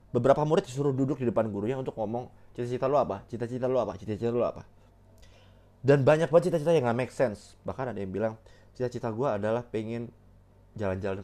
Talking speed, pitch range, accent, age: 185 wpm, 100-120 Hz, native, 20-39